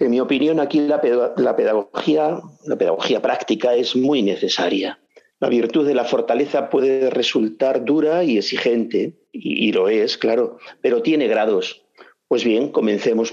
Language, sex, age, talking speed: Spanish, male, 50-69, 140 wpm